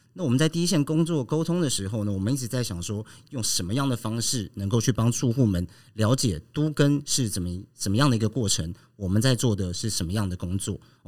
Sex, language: male, Chinese